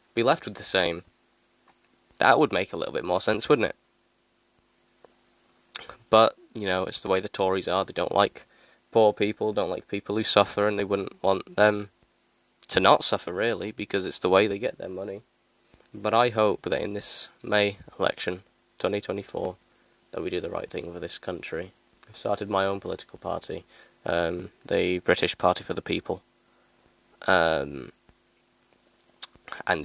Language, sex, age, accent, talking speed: English, male, 10-29, British, 175 wpm